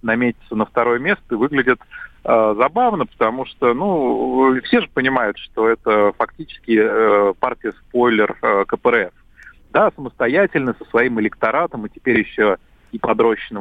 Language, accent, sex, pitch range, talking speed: Russian, native, male, 105-130 Hz, 140 wpm